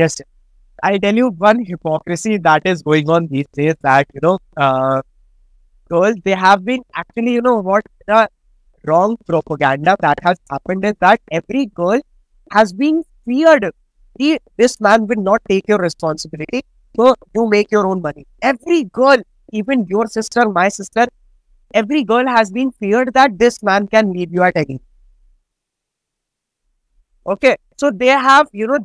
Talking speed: 155 wpm